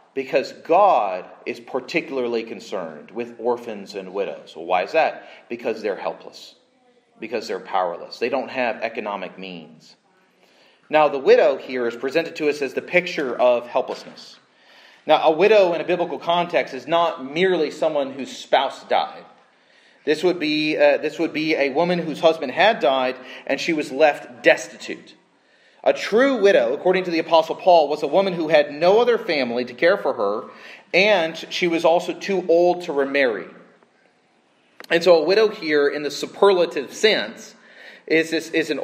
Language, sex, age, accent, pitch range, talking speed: English, male, 30-49, American, 135-170 Hz, 165 wpm